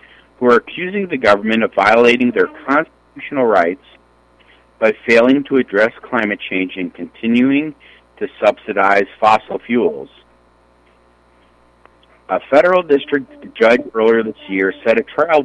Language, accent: English, American